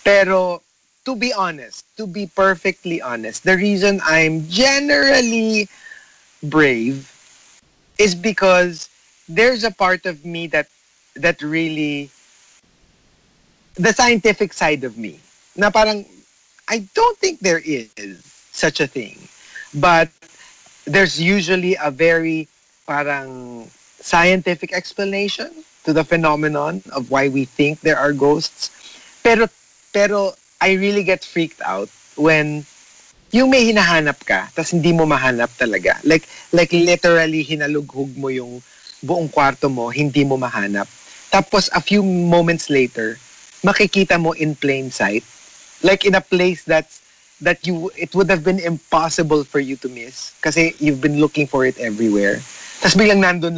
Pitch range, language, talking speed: 145-195 Hz, English, 135 wpm